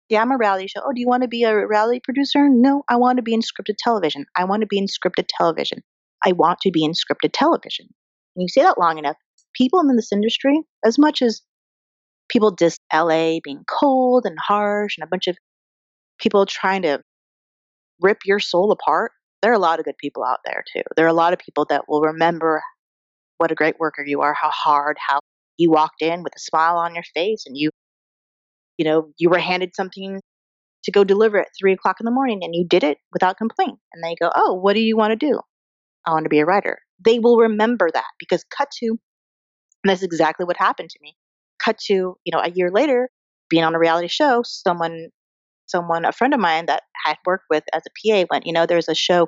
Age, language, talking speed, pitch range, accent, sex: 30-49, English, 230 wpm, 160-225 Hz, American, female